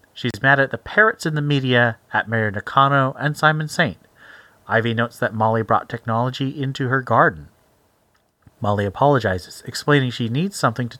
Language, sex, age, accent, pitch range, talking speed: English, male, 30-49, American, 110-140 Hz, 165 wpm